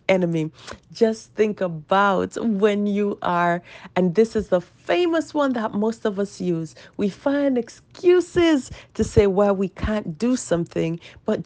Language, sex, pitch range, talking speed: English, female, 170-245 Hz, 150 wpm